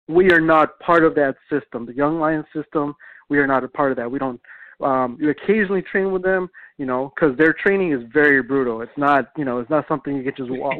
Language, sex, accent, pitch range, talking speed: English, male, American, 130-160 Hz, 245 wpm